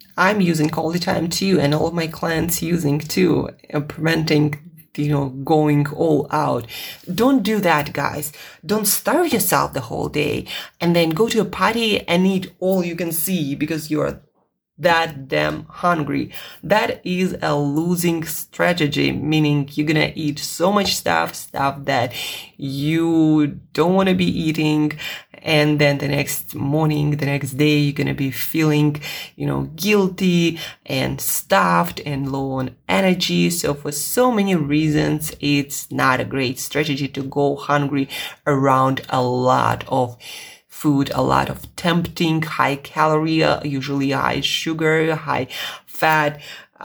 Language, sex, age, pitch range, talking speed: English, female, 20-39, 145-180 Hz, 145 wpm